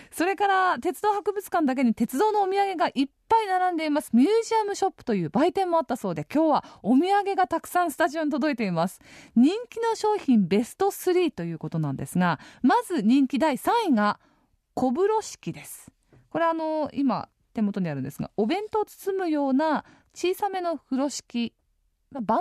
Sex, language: female, Japanese